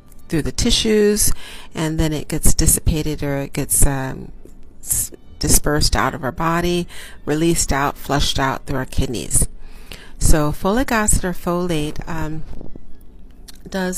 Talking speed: 130 wpm